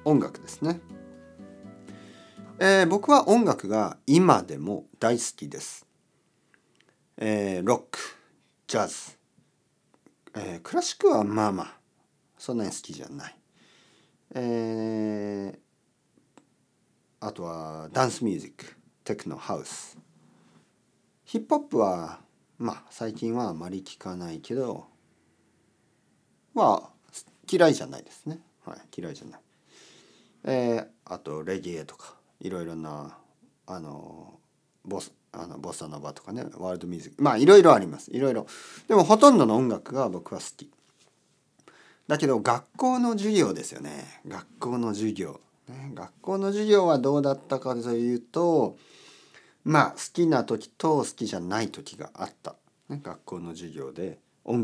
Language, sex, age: Japanese, male, 40-59